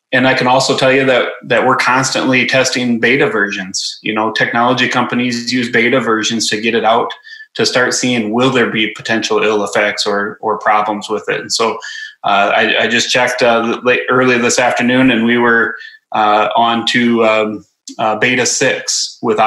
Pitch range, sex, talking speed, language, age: 110-130 Hz, male, 190 wpm, English, 20-39